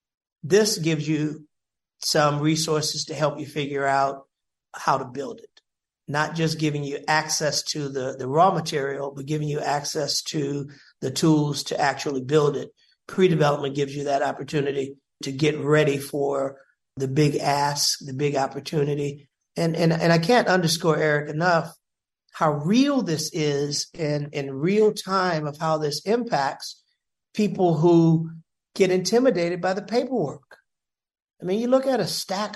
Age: 40-59